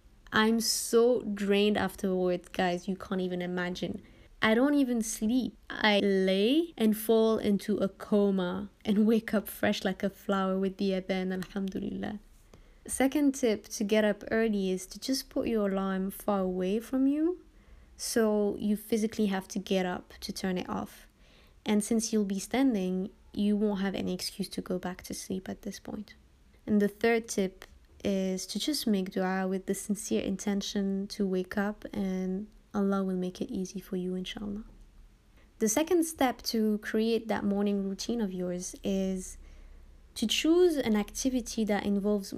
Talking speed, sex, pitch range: 165 wpm, female, 195-225 Hz